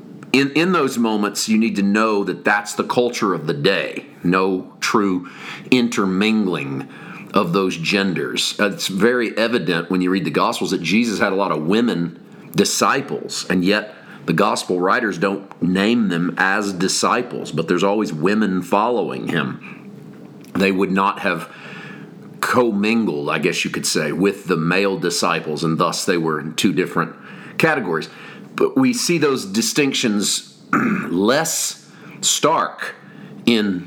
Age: 40-59